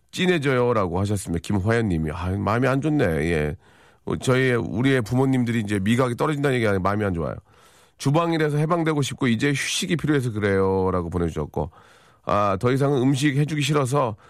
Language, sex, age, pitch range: Korean, male, 40-59, 100-130 Hz